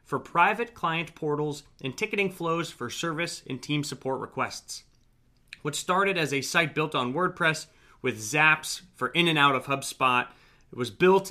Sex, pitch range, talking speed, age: male, 125-165 Hz, 170 wpm, 30-49